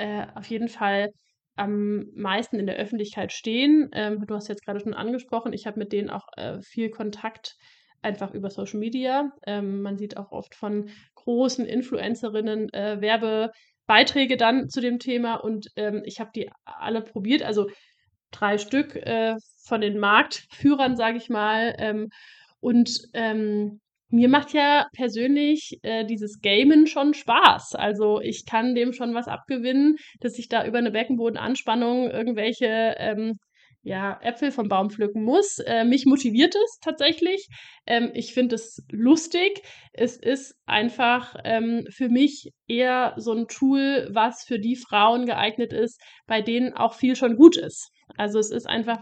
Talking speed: 155 wpm